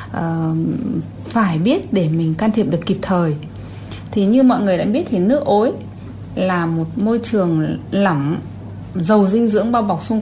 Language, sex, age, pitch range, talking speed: Vietnamese, female, 20-39, 170-220 Hz, 175 wpm